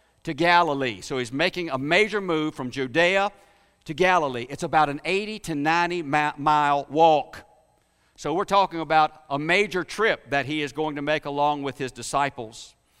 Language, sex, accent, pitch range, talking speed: English, male, American, 150-205 Hz, 170 wpm